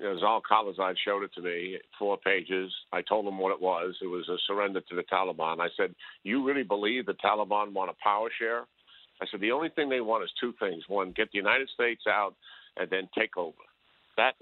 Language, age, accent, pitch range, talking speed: English, 50-69, American, 95-120 Hz, 220 wpm